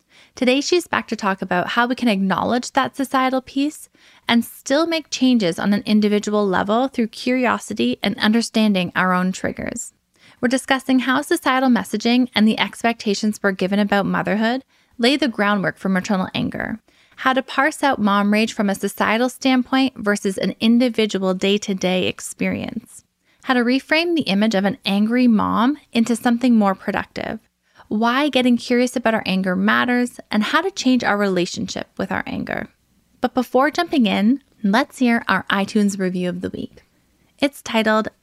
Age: 20-39